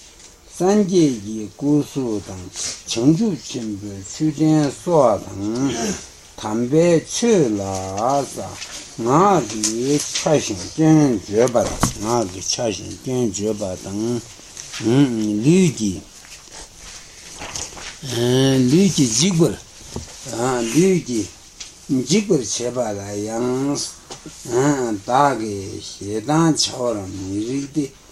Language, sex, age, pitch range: Italian, male, 60-79, 105-145 Hz